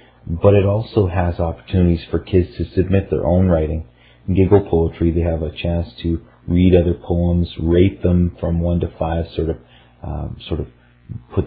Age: 30-49